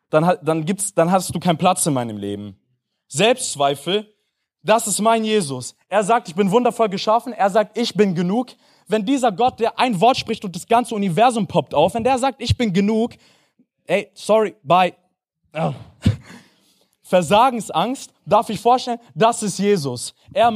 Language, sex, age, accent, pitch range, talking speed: German, male, 20-39, German, 165-220 Hz, 160 wpm